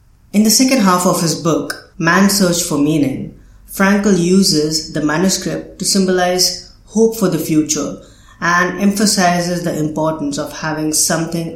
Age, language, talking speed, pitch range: 30-49, English, 145 wpm, 150-180 Hz